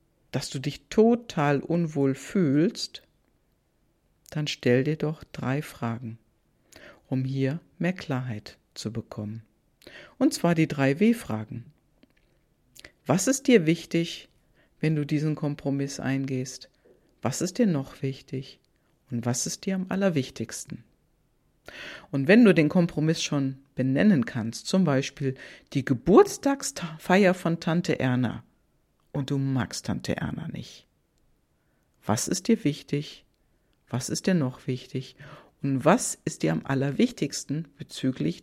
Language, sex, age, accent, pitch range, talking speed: German, female, 50-69, German, 130-170 Hz, 125 wpm